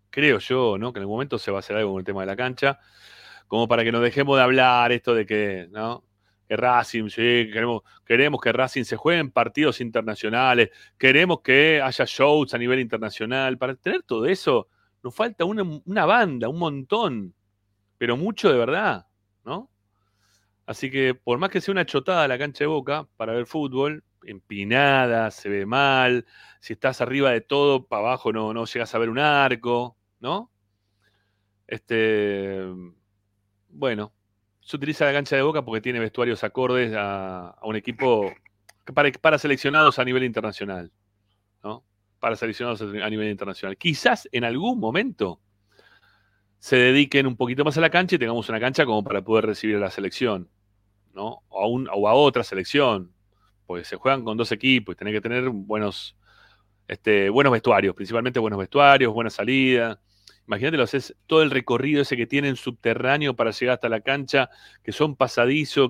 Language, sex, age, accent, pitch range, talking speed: Spanish, male, 30-49, Argentinian, 100-135 Hz, 175 wpm